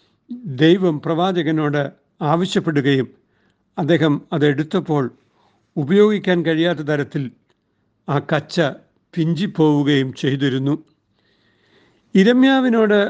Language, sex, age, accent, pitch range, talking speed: Malayalam, male, 60-79, native, 145-185 Hz, 60 wpm